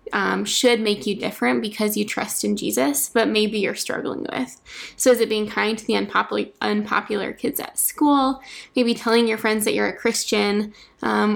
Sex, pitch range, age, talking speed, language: female, 205-235 Hz, 10-29, 185 wpm, English